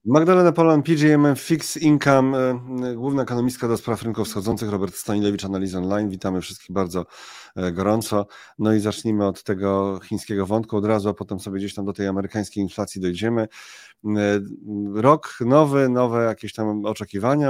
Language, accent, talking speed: Polish, native, 150 wpm